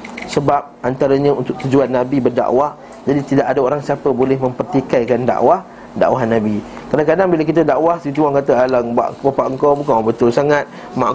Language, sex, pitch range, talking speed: Malay, male, 145-195 Hz, 165 wpm